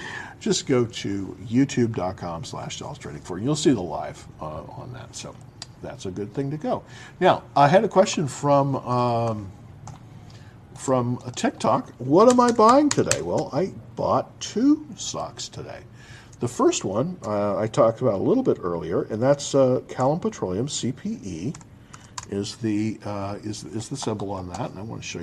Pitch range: 115-160 Hz